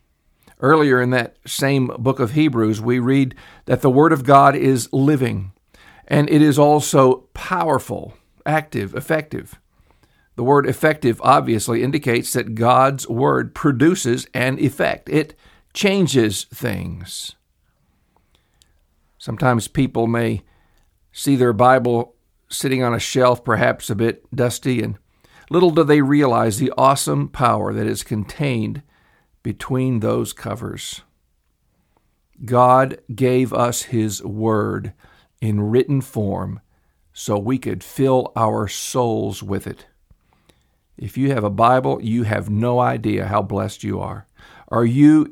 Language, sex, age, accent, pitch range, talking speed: English, male, 50-69, American, 105-135 Hz, 125 wpm